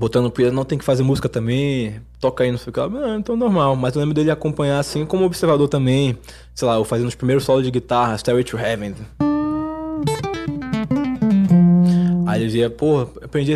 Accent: Brazilian